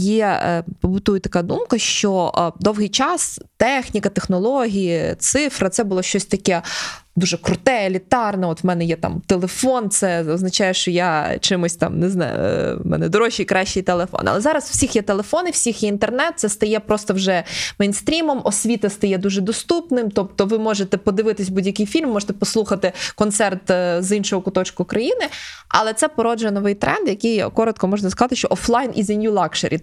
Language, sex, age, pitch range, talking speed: Ukrainian, female, 20-39, 190-230 Hz, 170 wpm